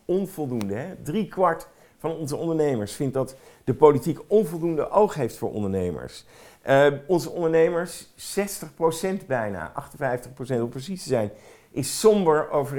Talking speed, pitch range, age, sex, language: 125 wpm, 115-160 Hz, 50-69, male, Dutch